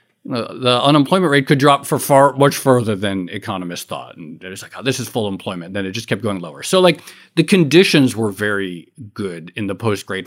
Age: 40-59